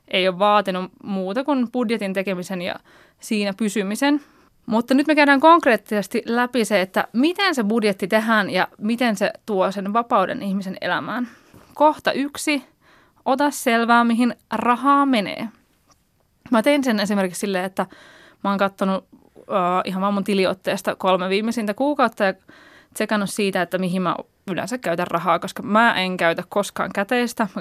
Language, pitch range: Finnish, 190-250 Hz